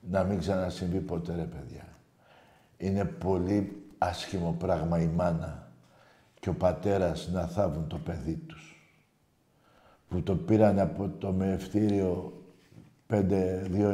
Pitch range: 95-115 Hz